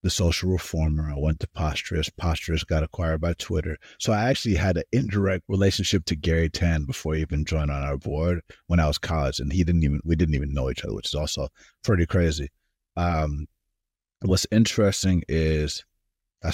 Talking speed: 190 wpm